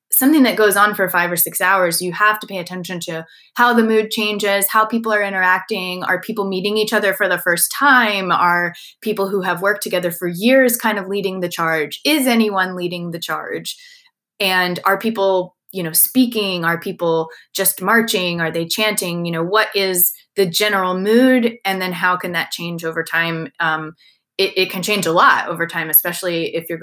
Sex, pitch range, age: female, 170-205 Hz, 20-39